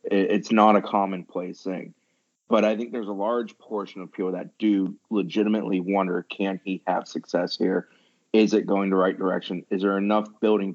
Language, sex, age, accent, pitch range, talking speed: English, male, 30-49, American, 95-105 Hz, 185 wpm